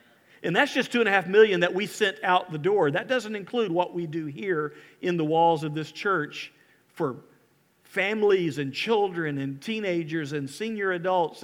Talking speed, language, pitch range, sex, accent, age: 170 wpm, English, 145-195 Hz, male, American, 50-69